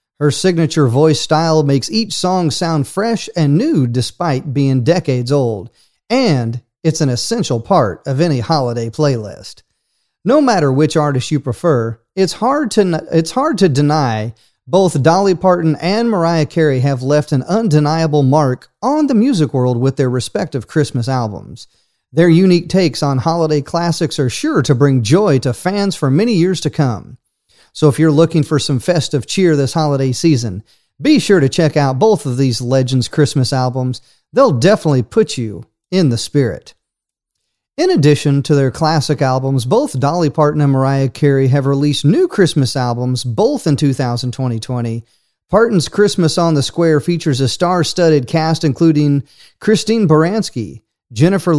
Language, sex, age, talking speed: English, male, 40-59, 155 wpm